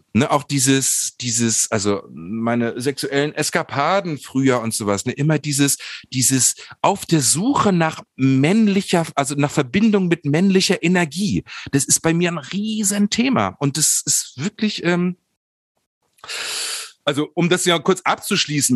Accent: German